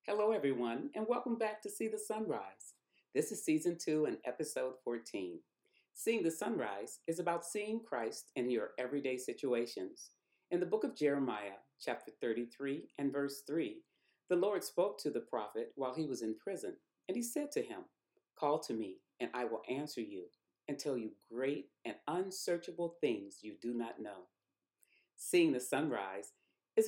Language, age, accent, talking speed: English, 40-59, American, 170 wpm